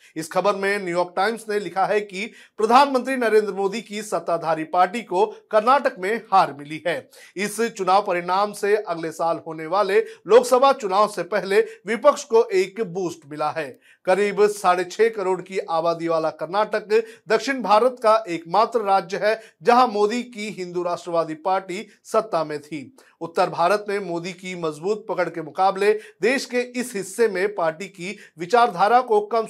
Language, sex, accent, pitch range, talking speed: Hindi, male, native, 175-225 Hz, 165 wpm